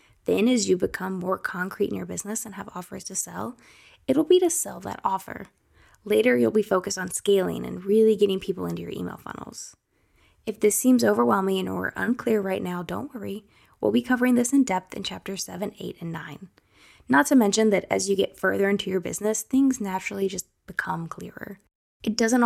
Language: English